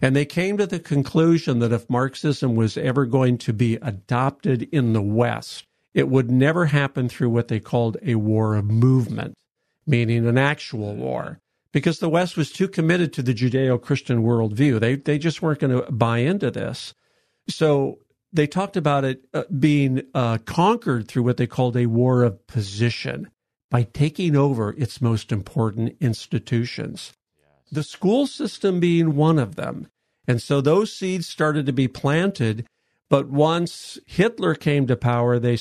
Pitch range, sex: 120-150 Hz, male